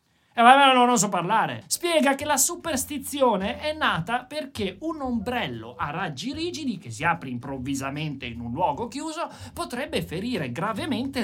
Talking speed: 155 wpm